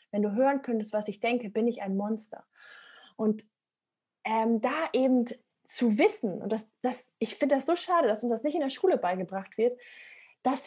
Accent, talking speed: German, 195 wpm